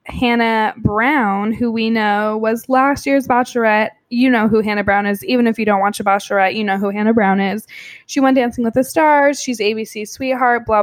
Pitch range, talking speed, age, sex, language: 210-245 Hz, 210 wpm, 20-39, female, English